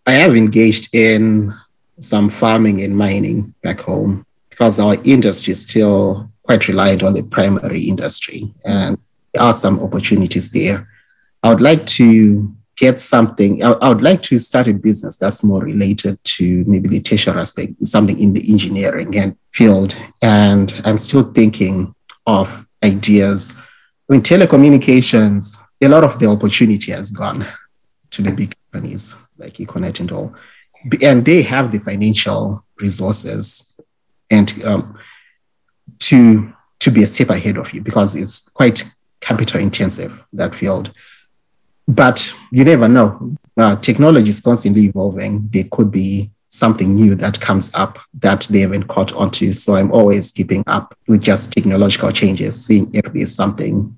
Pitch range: 100-115 Hz